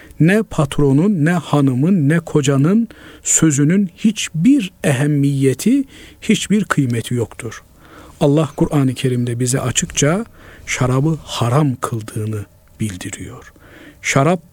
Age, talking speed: 50-69, 90 wpm